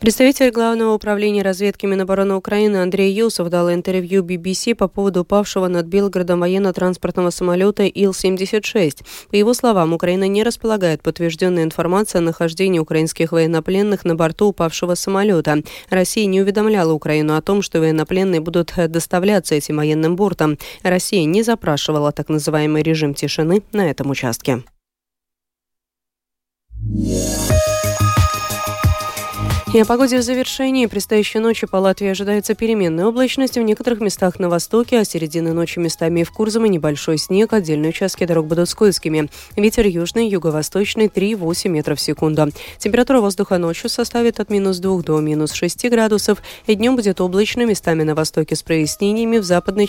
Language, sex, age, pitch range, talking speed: Russian, female, 20-39, 155-205 Hz, 145 wpm